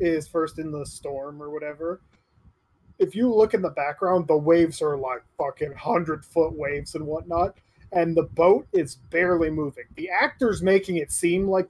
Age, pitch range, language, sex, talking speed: 30-49, 150-195 Hz, English, male, 180 wpm